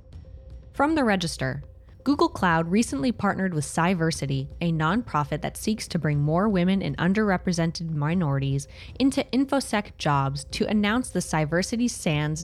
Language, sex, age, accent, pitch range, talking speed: English, female, 10-29, American, 140-190 Hz, 135 wpm